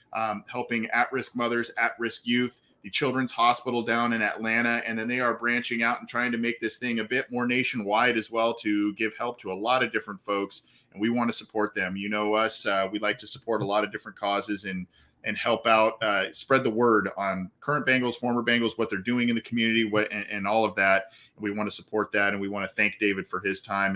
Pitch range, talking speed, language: 100-120 Hz, 245 wpm, English